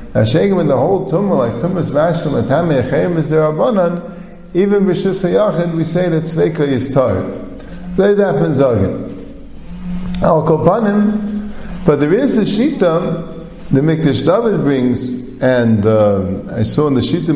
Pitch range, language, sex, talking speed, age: 130-180 Hz, English, male, 150 wpm, 50-69